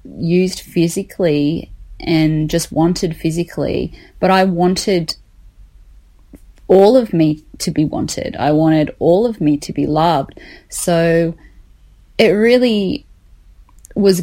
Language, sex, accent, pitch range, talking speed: English, female, Australian, 155-185 Hz, 115 wpm